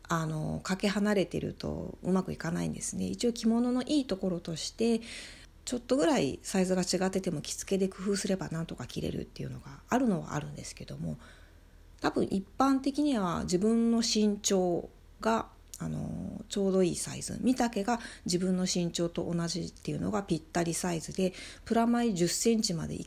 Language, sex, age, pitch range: Japanese, female, 40-59, 155-205 Hz